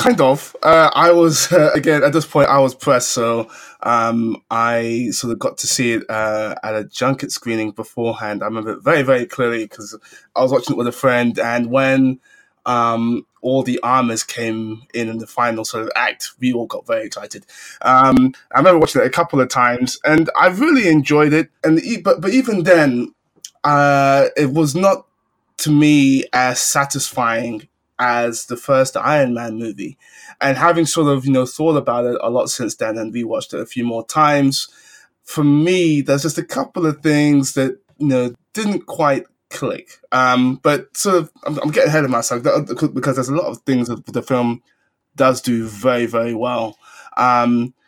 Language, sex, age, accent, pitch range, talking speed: English, male, 20-39, British, 115-150 Hz, 195 wpm